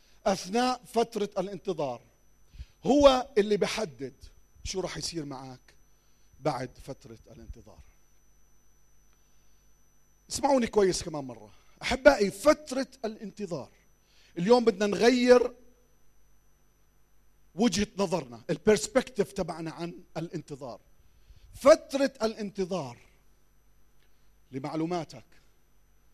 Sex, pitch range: male, 130-205 Hz